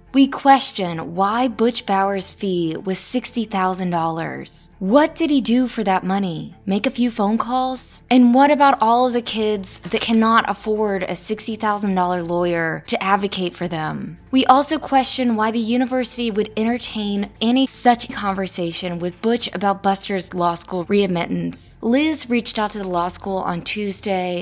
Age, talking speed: 20-39, 155 wpm